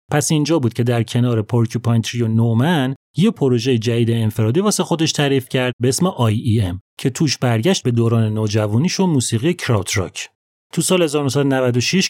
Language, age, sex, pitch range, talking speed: Persian, 30-49, male, 115-150 Hz, 185 wpm